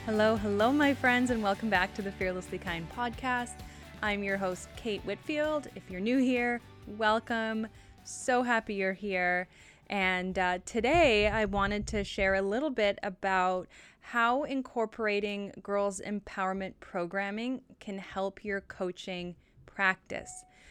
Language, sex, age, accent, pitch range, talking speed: English, female, 20-39, American, 185-225 Hz, 135 wpm